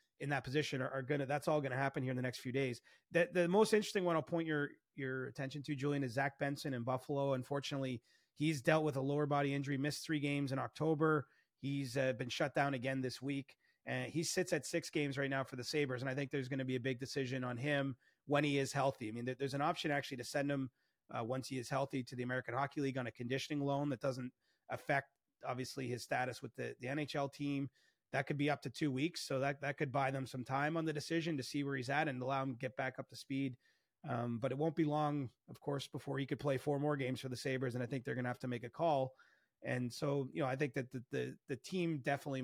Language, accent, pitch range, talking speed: English, American, 130-150 Hz, 270 wpm